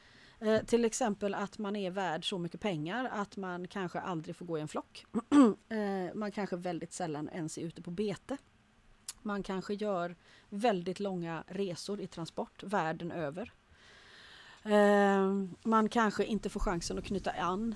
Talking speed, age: 160 wpm, 30-49